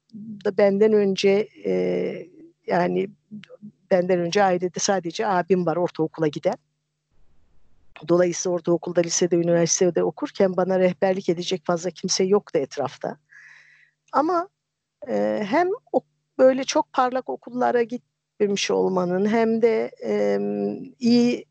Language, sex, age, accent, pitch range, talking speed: Turkish, female, 50-69, native, 175-225 Hz, 105 wpm